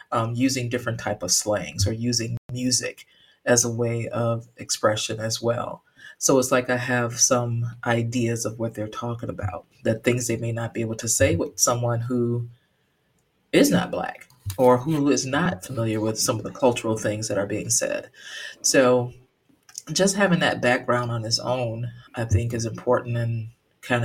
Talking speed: 180 wpm